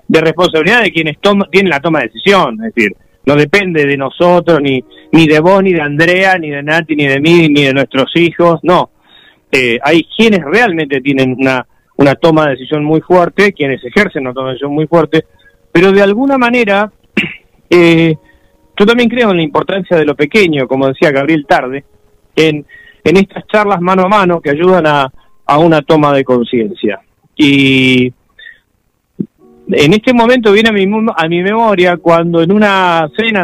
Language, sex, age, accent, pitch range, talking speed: Spanish, male, 40-59, Argentinian, 145-195 Hz, 180 wpm